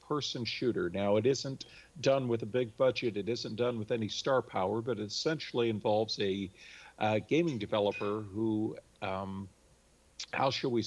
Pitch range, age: 105-125 Hz, 50-69